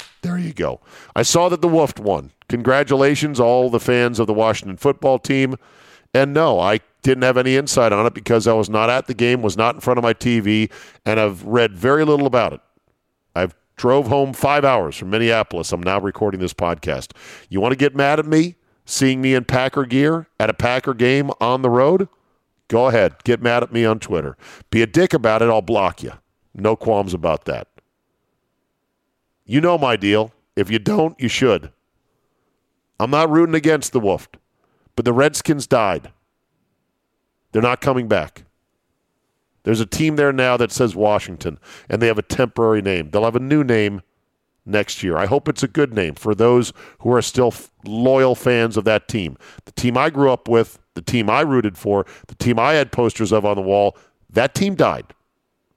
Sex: male